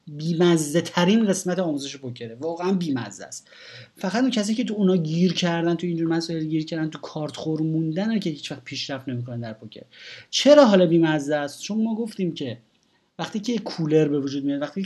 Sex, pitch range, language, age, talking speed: male, 135-190 Hz, Persian, 30-49, 205 wpm